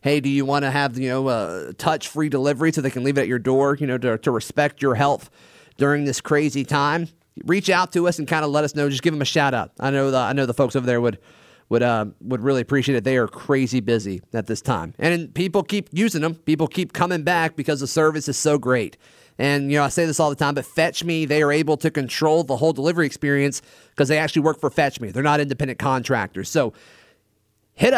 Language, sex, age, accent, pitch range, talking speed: English, male, 30-49, American, 135-160 Hz, 245 wpm